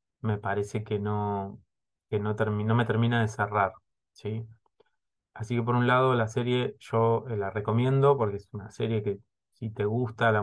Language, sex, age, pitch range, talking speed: Spanish, male, 20-39, 100-115 Hz, 185 wpm